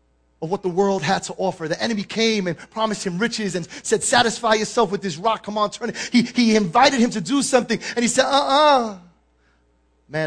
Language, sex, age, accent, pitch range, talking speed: English, male, 30-49, American, 195-295 Hz, 210 wpm